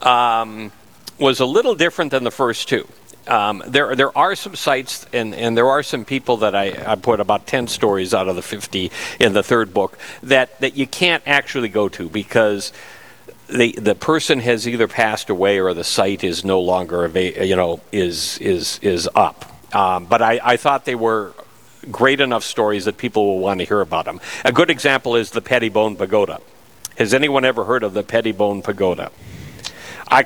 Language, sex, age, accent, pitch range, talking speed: English, male, 60-79, American, 105-135 Hz, 190 wpm